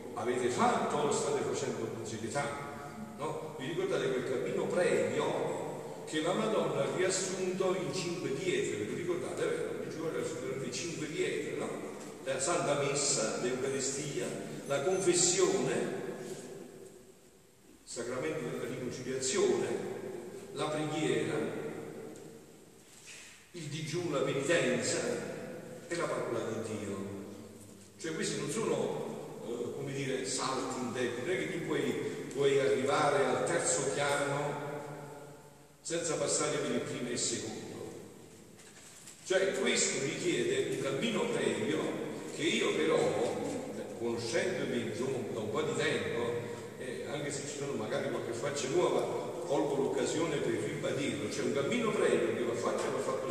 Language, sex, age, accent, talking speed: Italian, male, 50-69, native, 130 wpm